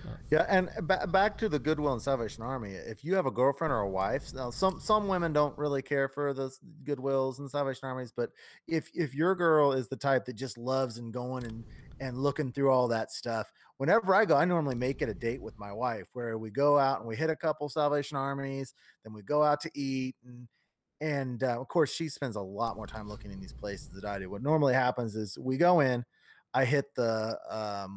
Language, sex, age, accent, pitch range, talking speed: English, male, 30-49, American, 115-150 Hz, 235 wpm